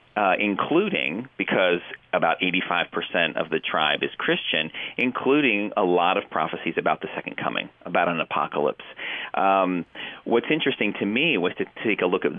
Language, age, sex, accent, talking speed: English, 40-59, male, American, 160 wpm